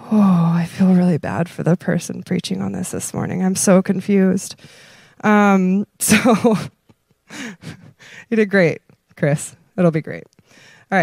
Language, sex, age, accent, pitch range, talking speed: English, female, 20-39, American, 175-220 Hz, 140 wpm